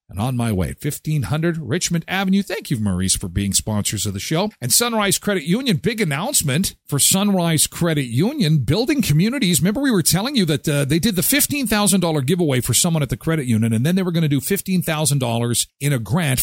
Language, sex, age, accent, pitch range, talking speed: English, male, 50-69, American, 120-185 Hz, 210 wpm